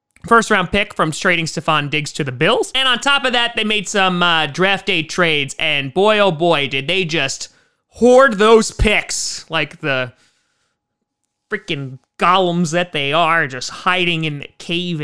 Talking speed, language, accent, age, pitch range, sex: 175 wpm, English, American, 30-49, 155-230 Hz, male